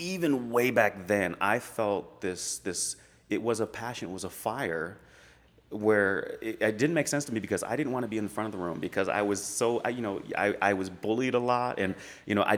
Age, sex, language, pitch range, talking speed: 30-49, male, English, 90-115 Hz, 250 wpm